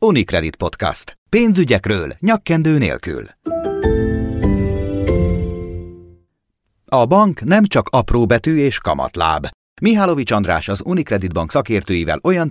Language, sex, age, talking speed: Hungarian, male, 40-59, 95 wpm